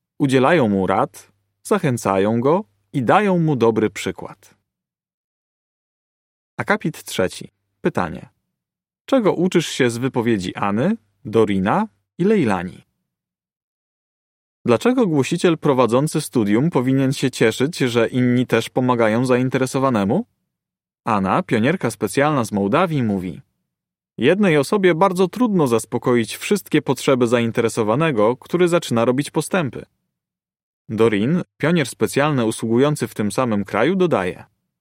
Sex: male